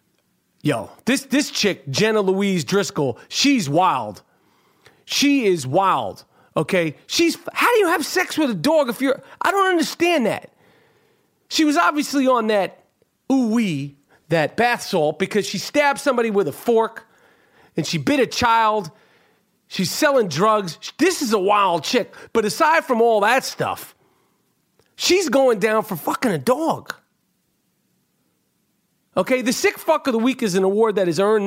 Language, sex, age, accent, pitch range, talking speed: English, male, 40-59, American, 195-255 Hz, 160 wpm